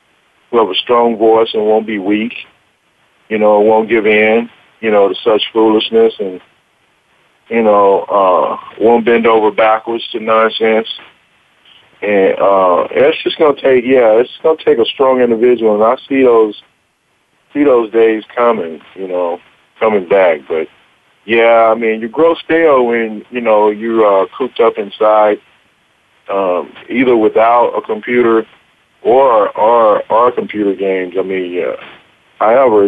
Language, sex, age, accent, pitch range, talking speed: English, male, 40-59, American, 100-115 Hz, 150 wpm